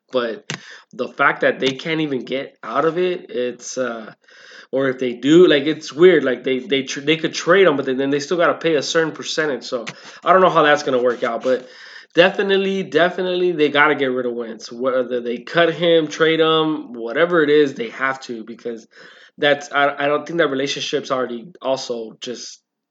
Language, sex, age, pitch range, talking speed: English, male, 20-39, 130-170 Hz, 215 wpm